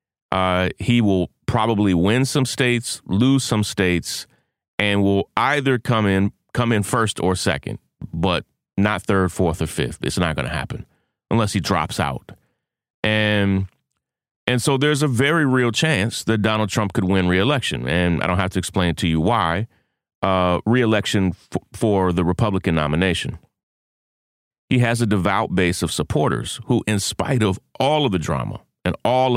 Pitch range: 90-120 Hz